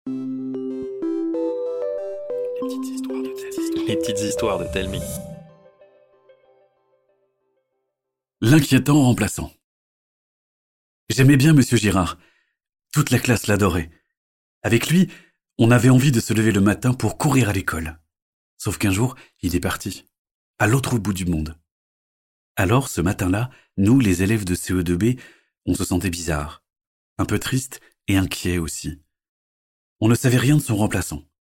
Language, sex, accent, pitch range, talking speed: French, male, French, 90-130 Hz, 125 wpm